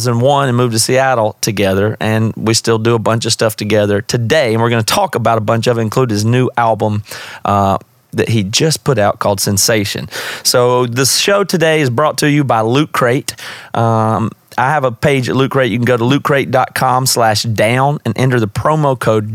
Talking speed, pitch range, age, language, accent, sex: 215 wpm, 110-140 Hz, 30-49, English, American, male